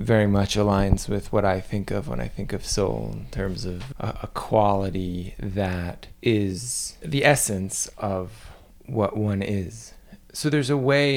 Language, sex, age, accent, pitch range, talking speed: English, male, 20-39, American, 95-115 Hz, 160 wpm